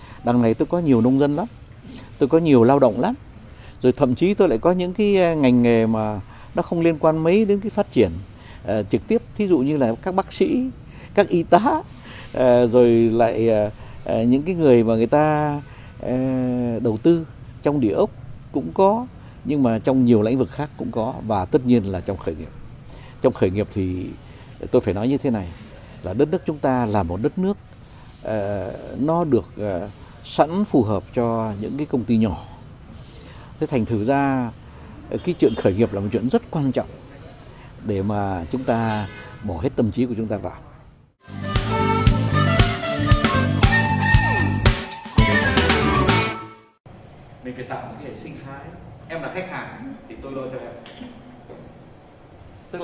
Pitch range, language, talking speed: 110-145 Hz, Vietnamese, 180 wpm